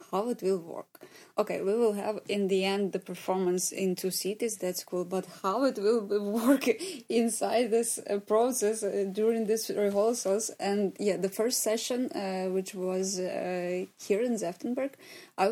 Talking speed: 160 wpm